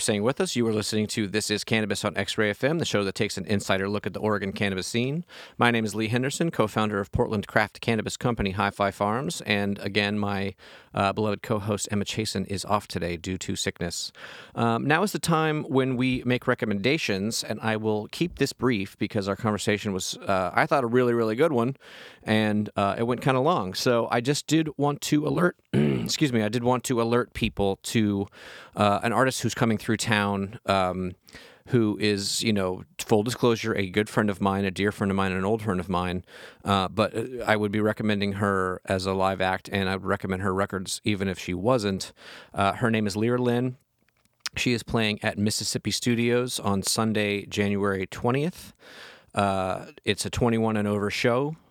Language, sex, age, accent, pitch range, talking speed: English, male, 30-49, American, 100-120 Hz, 205 wpm